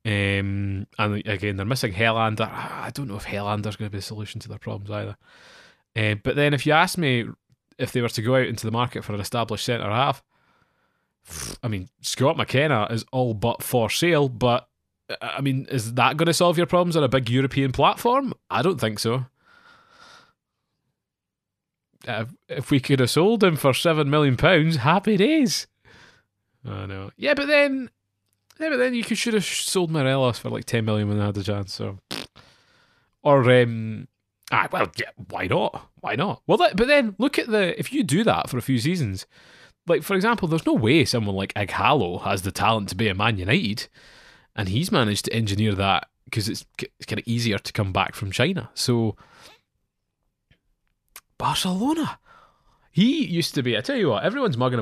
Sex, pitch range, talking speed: male, 105-160 Hz, 190 wpm